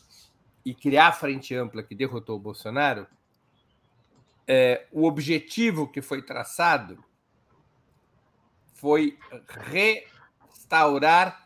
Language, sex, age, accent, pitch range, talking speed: Portuguese, male, 60-79, Brazilian, 125-160 Hz, 85 wpm